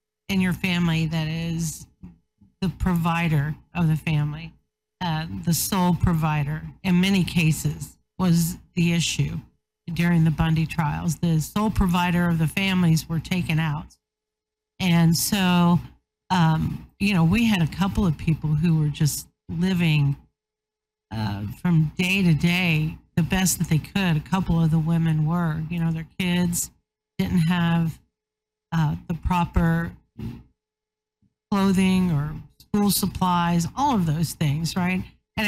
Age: 50-69